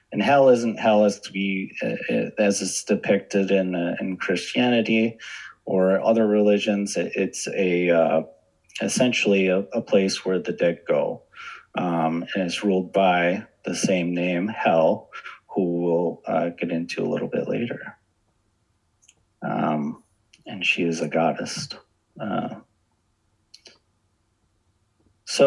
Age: 30-49